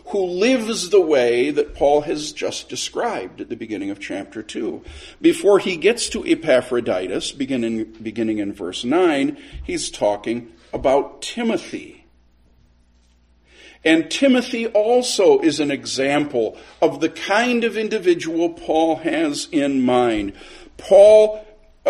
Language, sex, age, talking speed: English, male, 50-69, 125 wpm